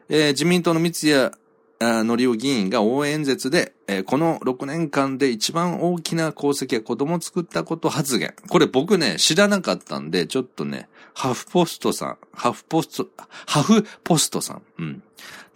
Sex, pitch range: male, 110-170 Hz